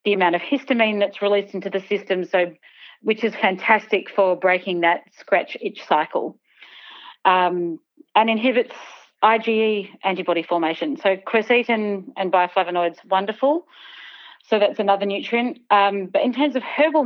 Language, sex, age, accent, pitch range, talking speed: English, female, 40-59, Australian, 185-220 Hz, 145 wpm